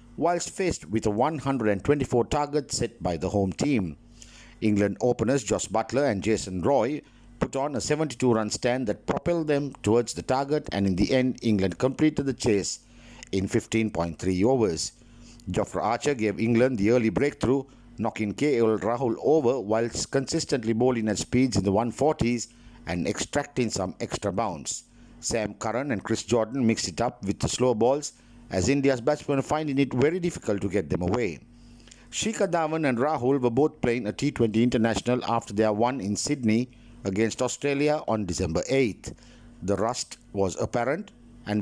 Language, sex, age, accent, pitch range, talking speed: English, male, 60-79, Indian, 110-135 Hz, 160 wpm